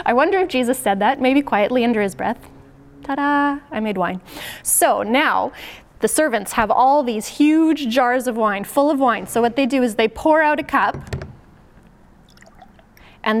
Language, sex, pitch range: English, female, 210-270 Hz